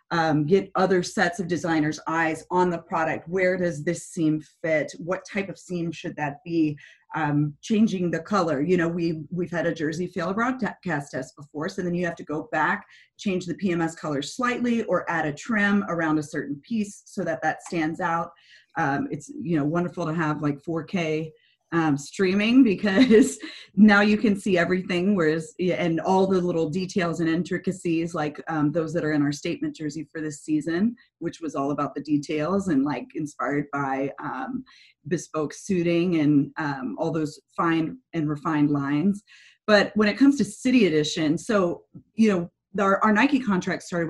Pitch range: 155-195 Hz